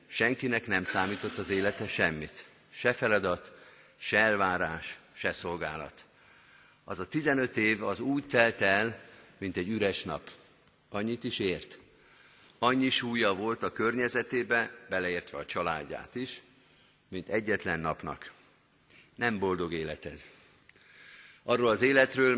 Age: 50-69